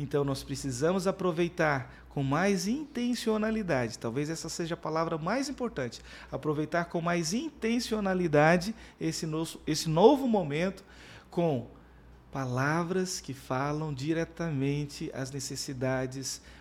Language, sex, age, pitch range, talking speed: Portuguese, male, 40-59, 145-175 Hz, 105 wpm